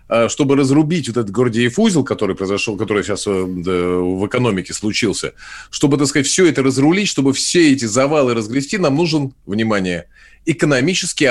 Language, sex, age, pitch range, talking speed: Russian, male, 30-49, 105-150 Hz, 150 wpm